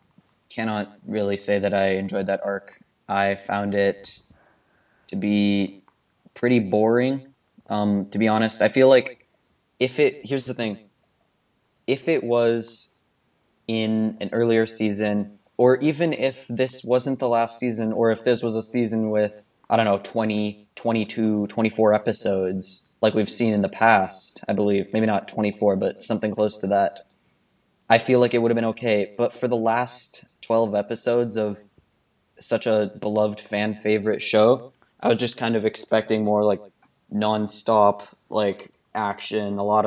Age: 20-39